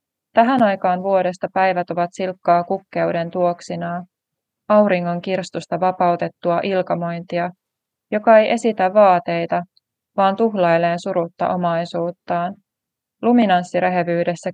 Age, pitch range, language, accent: 20-39, 170-195 Hz, Finnish, native